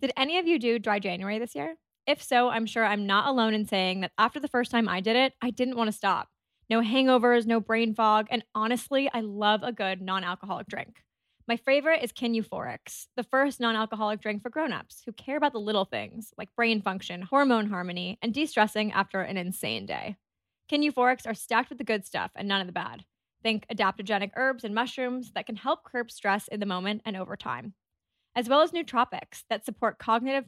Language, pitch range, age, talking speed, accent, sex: English, 200-245 Hz, 20-39, 210 wpm, American, female